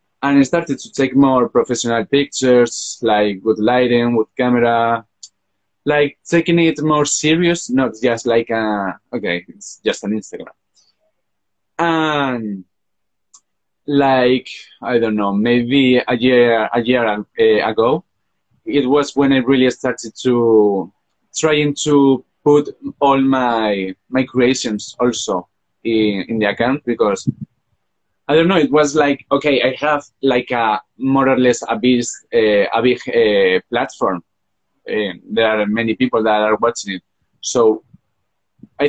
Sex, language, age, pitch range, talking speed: male, English, 20-39, 110-140 Hz, 135 wpm